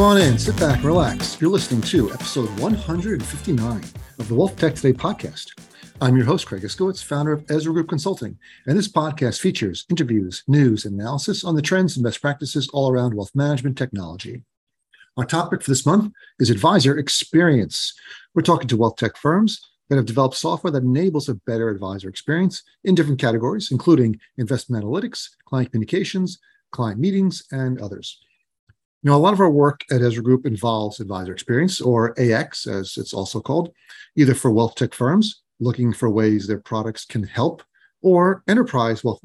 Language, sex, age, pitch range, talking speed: English, male, 40-59, 115-165 Hz, 175 wpm